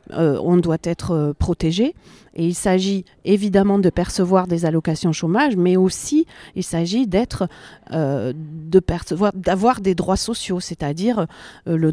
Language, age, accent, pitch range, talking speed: French, 40-59, French, 165-200 Hz, 125 wpm